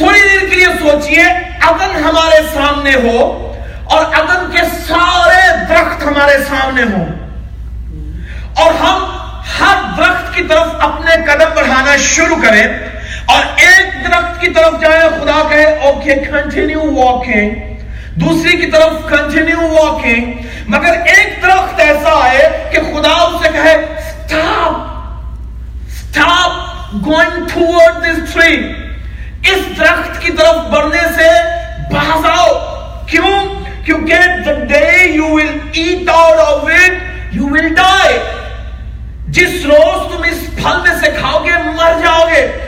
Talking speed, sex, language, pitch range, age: 105 wpm, male, Urdu, 295-340 Hz, 40-59